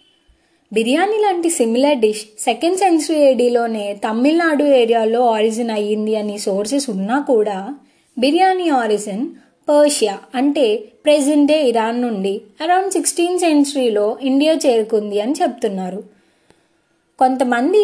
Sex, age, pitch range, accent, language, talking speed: female, 20-39, 220-300 Hz, native, Telugu, 100 wpm